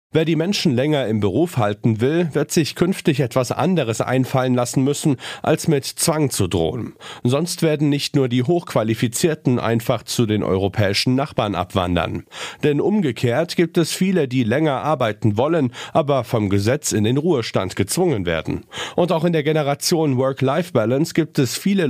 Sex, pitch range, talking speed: male, 105-155 Hz, 160 wpm